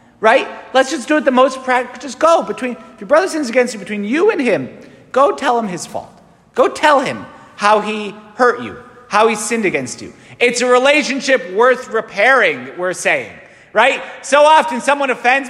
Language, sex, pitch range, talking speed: English, male, 205-260 Hz, 195 wpm